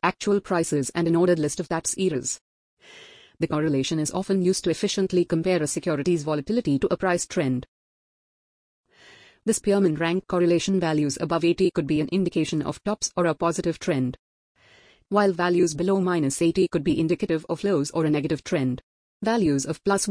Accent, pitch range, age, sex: Indian, 155-195 Hz, 30-49, female